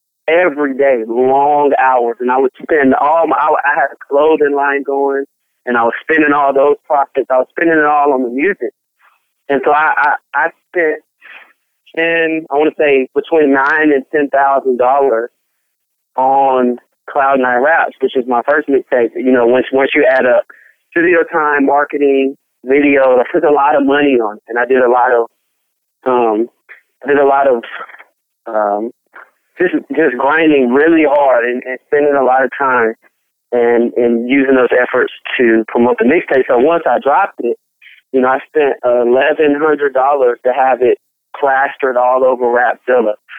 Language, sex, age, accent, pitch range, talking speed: English, male, 30-49, American, 125-145 Hz, 175 wpm